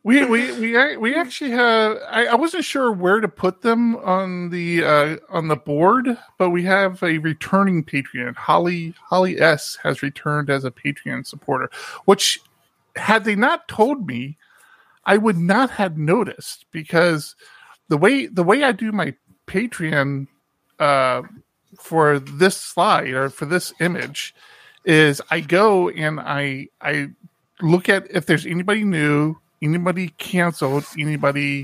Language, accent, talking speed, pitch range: English, American, 150 wpm, 150-205 Hz